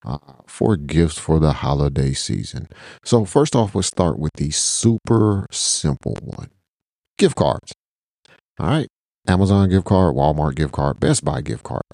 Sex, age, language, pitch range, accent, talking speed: male, 40-59, English, 75-100 Hz, American, 160 wpm